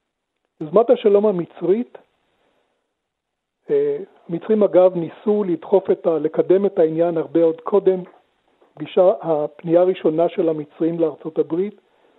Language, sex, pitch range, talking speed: Hebrew, male, 160-200 Hz, 105 wpm